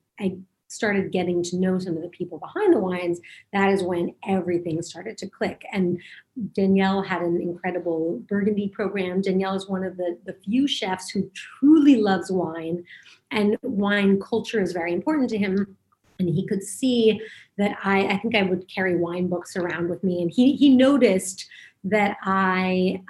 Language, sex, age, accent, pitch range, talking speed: English, female, 30-49, American, 180-210 Hz, 180 wpm